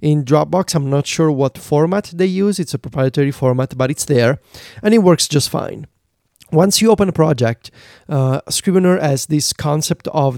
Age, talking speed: 30-49, 185 wpm